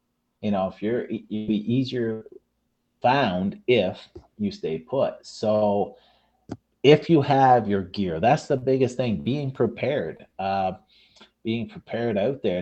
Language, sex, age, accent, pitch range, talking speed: English, male, 30-49, American, 105-125 Hz, 130 wpm